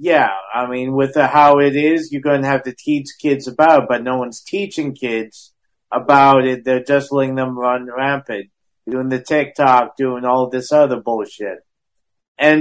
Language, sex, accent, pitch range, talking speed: English, male, American, 130-150 Hz, 180 wpm